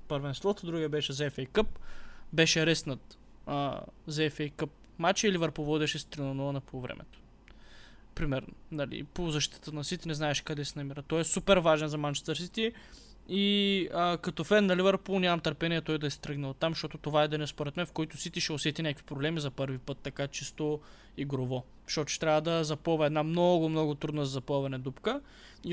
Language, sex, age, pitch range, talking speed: Bulgarian, male, 20-39, 145-175 Hz, 185 wpm